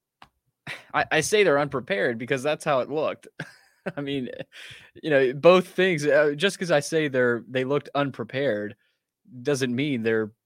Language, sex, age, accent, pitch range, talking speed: English, male, 20-39, American, 115-140 Hz, 155 wpm